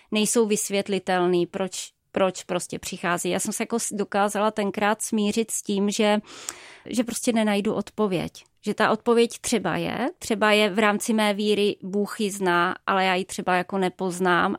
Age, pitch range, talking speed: 20-39, 205-230 Hz, 165 wpm